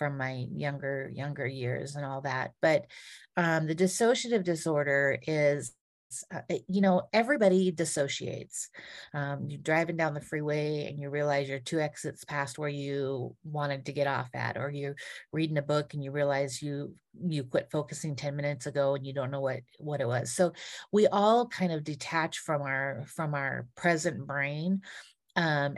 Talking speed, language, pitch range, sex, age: 175 wpm, English, 140-170 Hz, female, 40-59